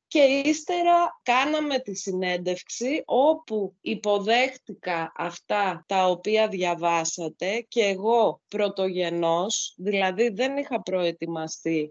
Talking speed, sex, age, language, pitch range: 90 wpm, female, 30-49, Greek, 175-240 Hz